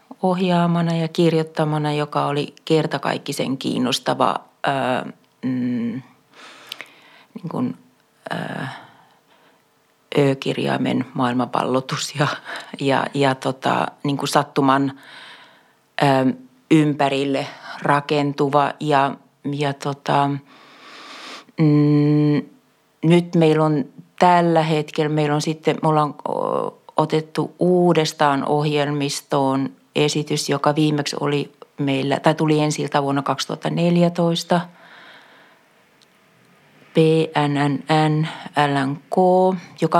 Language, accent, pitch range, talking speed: Finnish, native, 145-165 Hz, 75 wpm